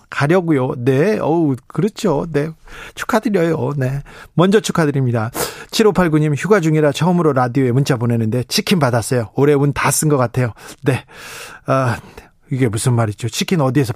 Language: Korean